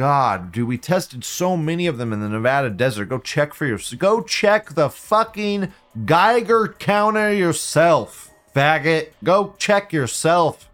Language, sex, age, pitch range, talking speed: English, male, 30-49, 105-165 Hz, 150 wpm